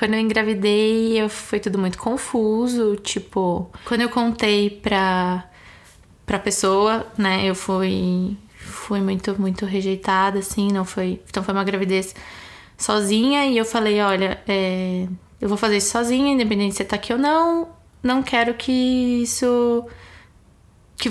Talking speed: 140 wpm